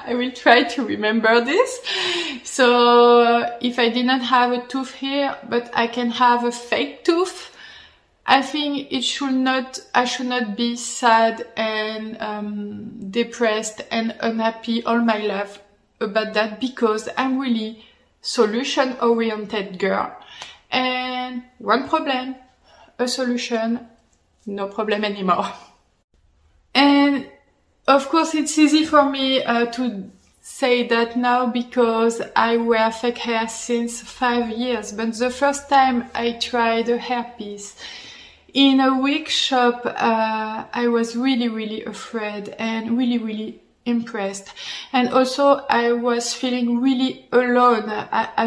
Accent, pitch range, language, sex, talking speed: French, 225-260 Hz, English, female, 130 wpm